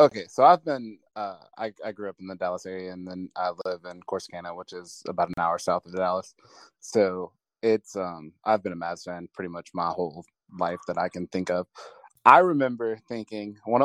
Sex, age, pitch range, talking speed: male, 20-39, 100-115 Hz, 210 wpm